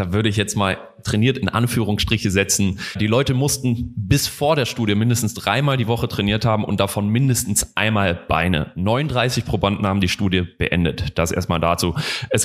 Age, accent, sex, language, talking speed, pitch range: 30-49, German, male, German, 175 wpm, 100-125 Hz